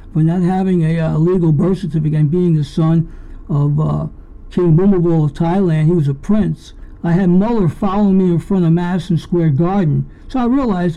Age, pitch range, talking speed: 60-79, 165-200 Hz, 195 wpm